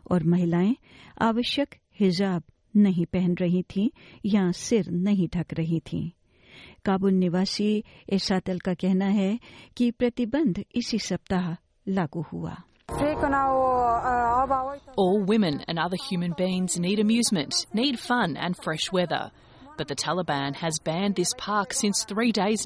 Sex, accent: female, Australian